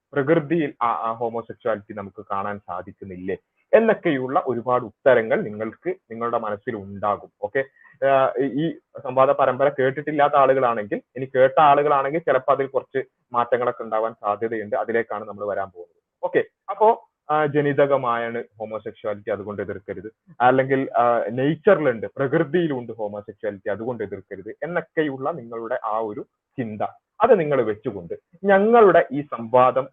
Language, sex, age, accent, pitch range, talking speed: Malayalam, male, 30-49, native, 115-165 Hz, 110 wpm